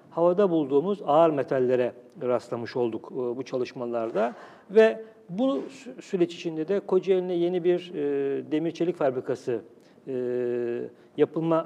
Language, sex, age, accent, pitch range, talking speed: Turkish, male, 60-79, native, 155-195 Hz, 100 wpm